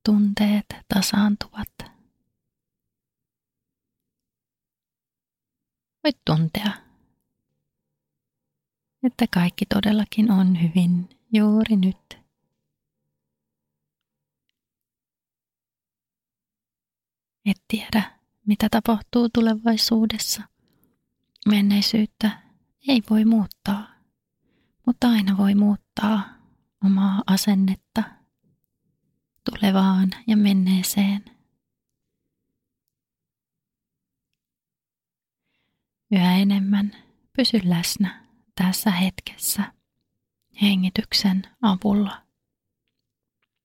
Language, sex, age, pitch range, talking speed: Finnish, female, 30-49, 190-220 Hz, 50 wpm